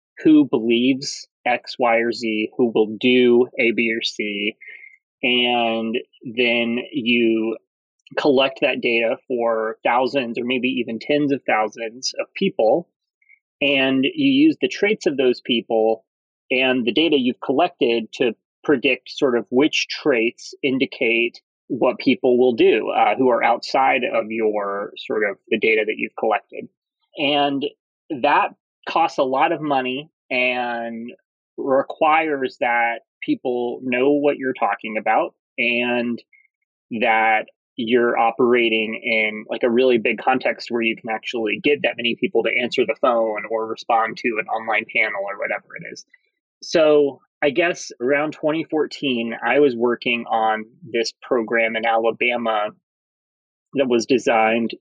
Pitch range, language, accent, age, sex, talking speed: 115-145 Hz, English, American, 30-49, male, 140 wpm